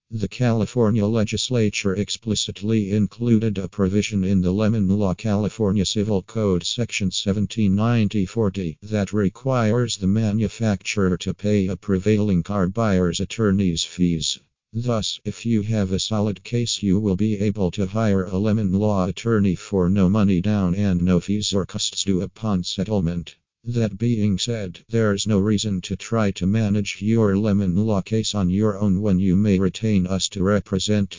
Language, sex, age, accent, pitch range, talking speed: English, male, 50-69, American, 95-110 Hz, 155 wpm